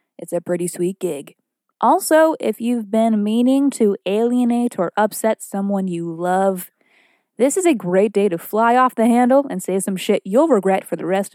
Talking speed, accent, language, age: 190 wpm, American, English, 20-39